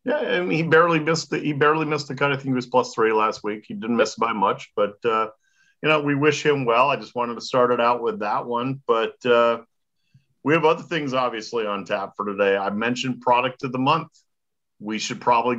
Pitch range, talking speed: 110-150 Hz, 240 wpm